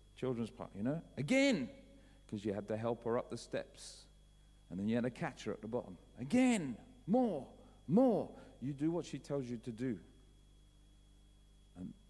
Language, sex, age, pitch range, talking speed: English, male, 50-69, 100-140 Hz, 180 wpm